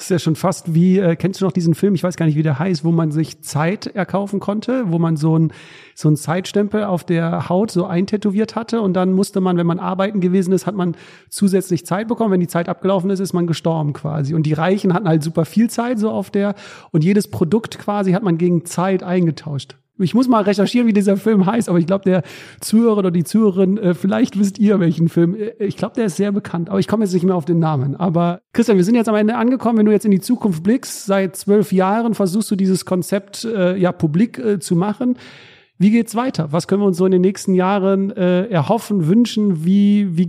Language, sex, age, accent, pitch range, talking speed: German, male, 40-59, German, 175-205 Hz, 240 wpm